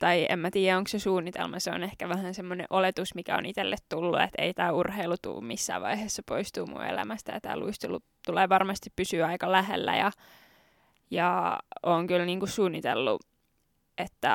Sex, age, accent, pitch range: female, 20-39, native, 175-200 Hz